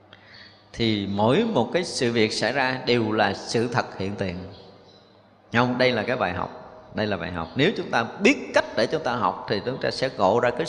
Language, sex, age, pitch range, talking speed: Vietnamese, male, 20-39, 100-135 Hz, 225 wpm